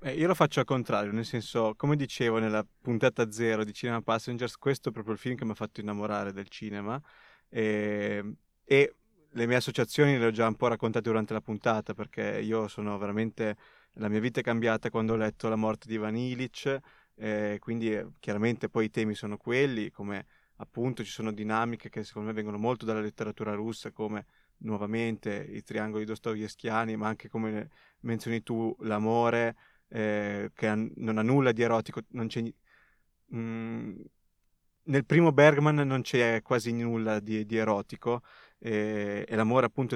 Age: 20-39